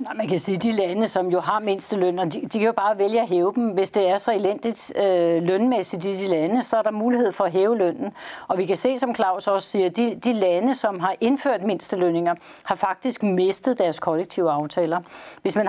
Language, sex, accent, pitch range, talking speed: Danish, female, native, 180-225 Hz, 240 wpm